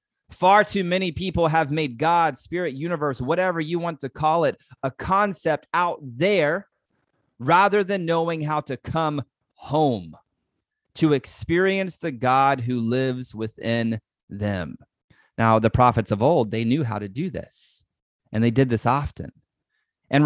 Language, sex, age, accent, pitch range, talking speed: English, male, 30-49, American, 125-165 Hz, 150 wpm